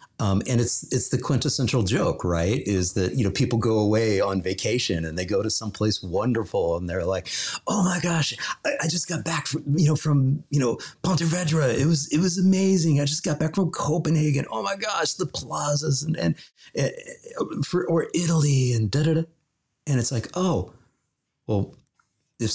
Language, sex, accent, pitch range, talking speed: English, male, American, 95-140 Hz, 190 wpm